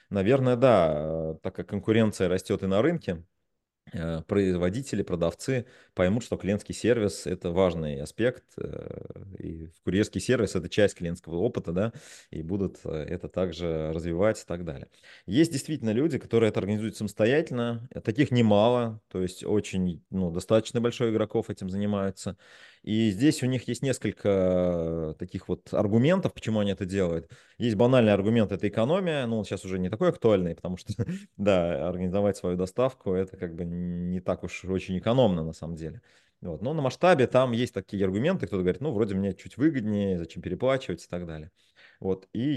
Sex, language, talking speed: male, Russian, 160 wpm